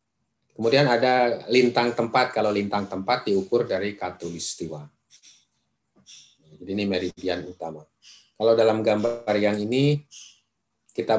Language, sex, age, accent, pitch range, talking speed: Indonesian, male, 30-49, native, 95-110 Hz, 105 wpm